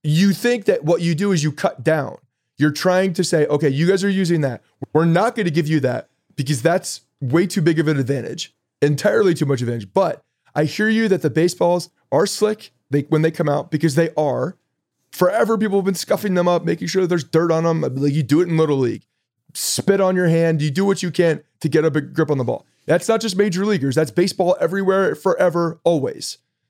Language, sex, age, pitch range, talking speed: English, male, 30-49, 145-185 Hz, 225 wpm